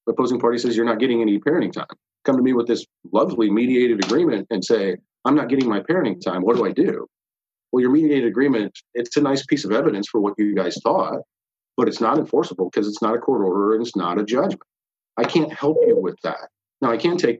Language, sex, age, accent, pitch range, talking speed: English, male, 40-59, American, 105-135 Hz, 240 wpm